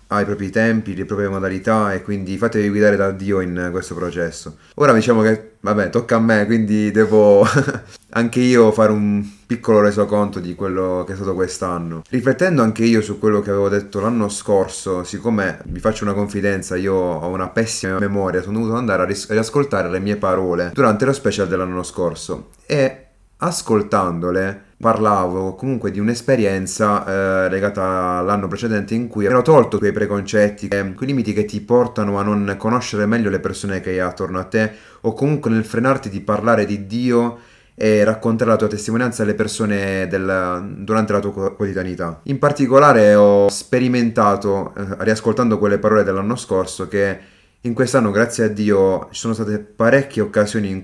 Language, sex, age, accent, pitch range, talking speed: Italian, male, 30-49, native, 95-110 Hz, 170 wpm